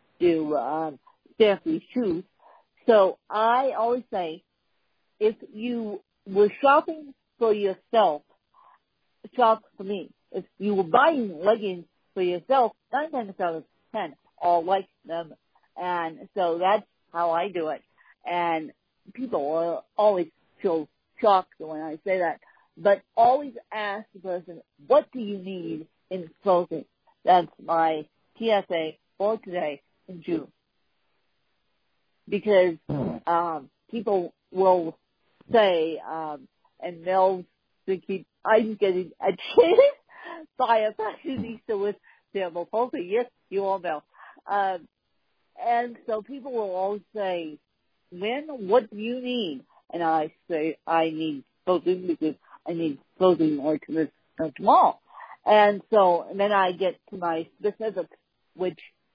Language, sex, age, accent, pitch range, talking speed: English, female, 50-69, American, 170-225 Hz, 125 wpm